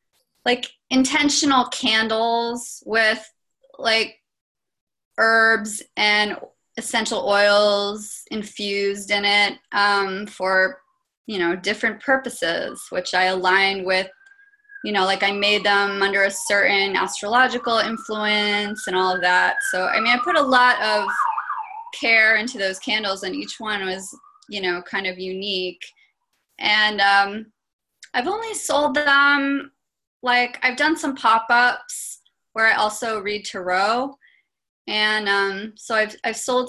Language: English